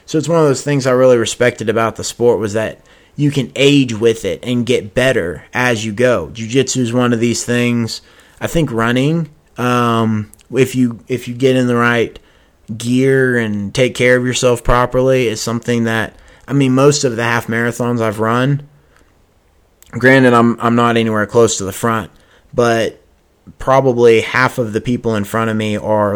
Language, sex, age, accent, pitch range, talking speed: English, male, 20-39, American, 110-125 Hz, 190 wpm